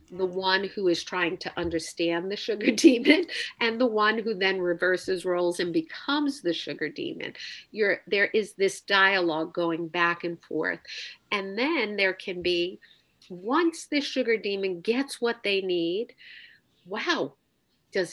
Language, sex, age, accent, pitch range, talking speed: English, female, 50-69, American, 170-245 Hz, 150 wpm